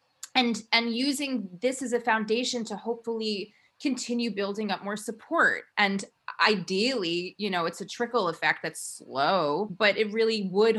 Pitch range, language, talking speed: 165-215 Hz, English, 155 wpm